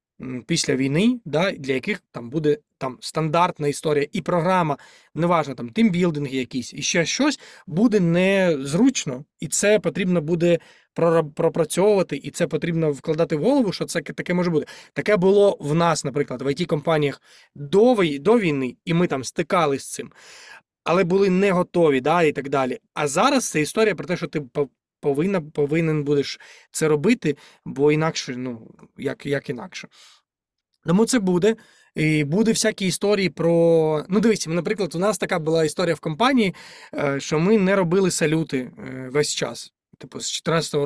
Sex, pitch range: male, 145-190 Hz